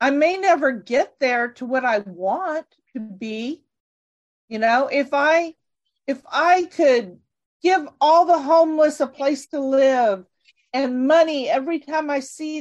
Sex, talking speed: female, 150 wpm